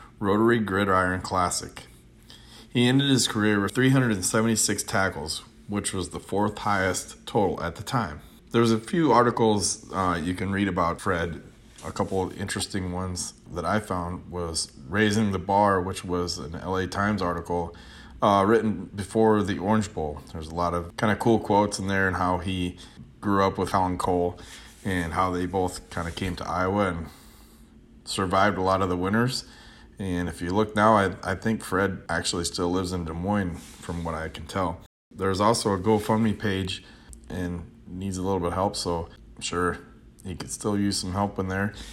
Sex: male